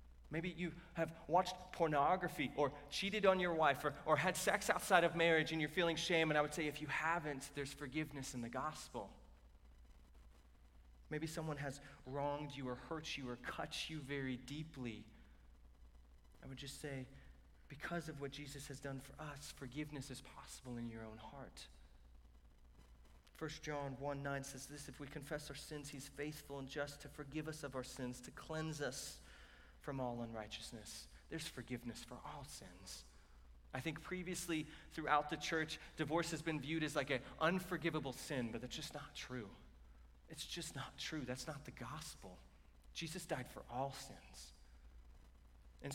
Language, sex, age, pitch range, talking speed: English, male, 30-49, 105-155 Hz, 170 wpm